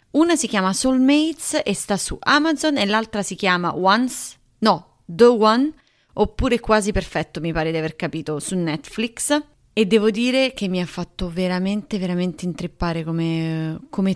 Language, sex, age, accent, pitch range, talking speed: Italian, female, 30-49, native, 165-225 Hz, 160 wpm